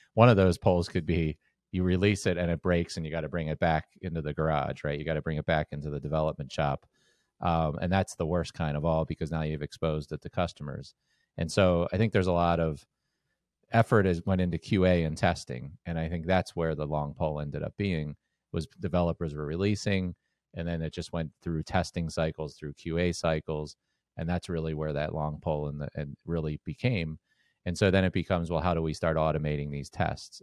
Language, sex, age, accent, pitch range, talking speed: English, male, 30-49, American, 80-90 Hz, 225 wpm